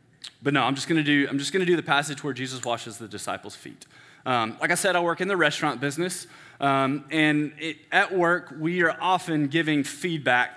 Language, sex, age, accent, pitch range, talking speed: English, male, 20-39, American, 135-160 Hz, 205 wpm